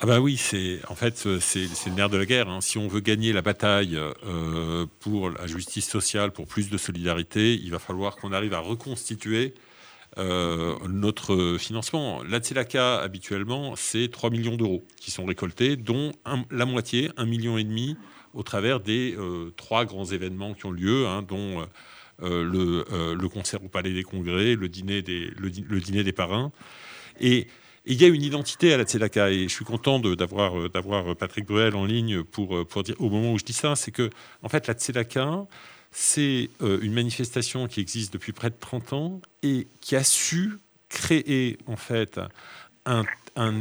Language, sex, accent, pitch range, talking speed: French, male, French, 95-125 Hz, 195 wpm